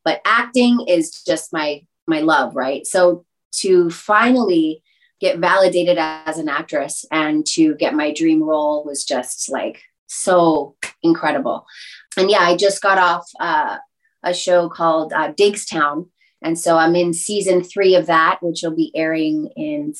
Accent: American